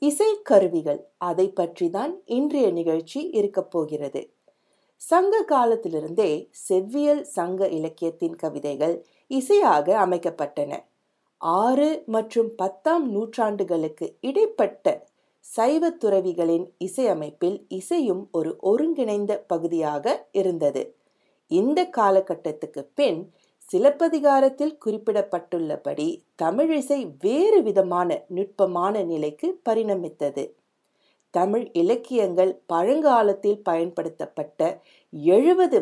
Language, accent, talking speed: Tamil, native, 75 wpm